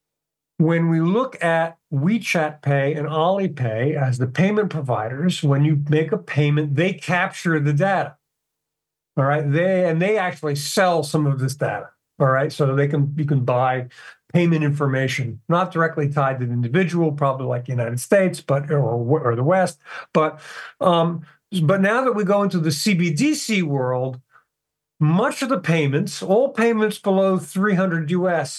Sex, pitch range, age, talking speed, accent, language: male, 145-185 Hz, 50-69, 165 wpm, American, English